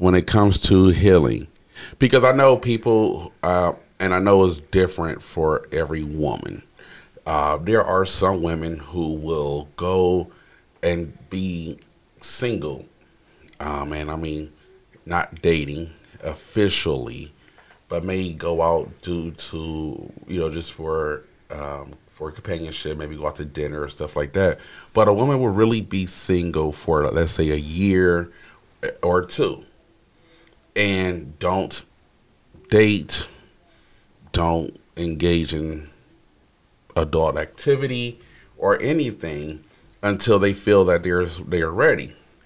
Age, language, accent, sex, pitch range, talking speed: 40-59, English, American, male, 80-105 Hz, 125 wpm